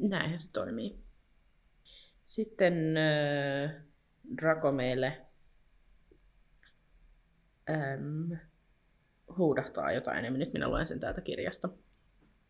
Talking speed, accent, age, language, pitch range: 70 wpm, native, 20-39, Finnish, 145-170 Hz